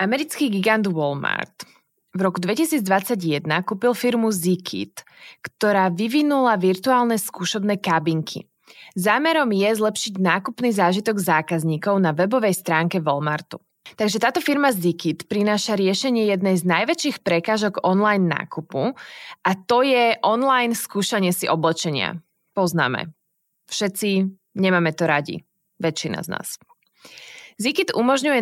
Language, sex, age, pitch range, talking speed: Slovak, female, 20-39, 180-235 Hz, 110 wpm